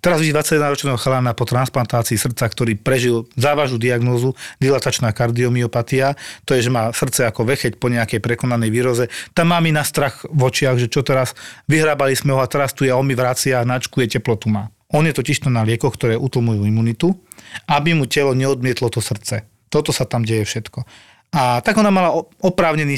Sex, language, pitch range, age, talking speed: male, Slovak, 120-150 Hz, 40-59, 190 wpm